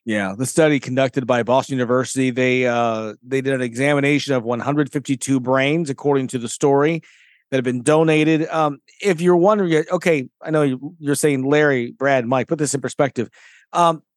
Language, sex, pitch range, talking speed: English, male, 125-160 Hz, 175 wpm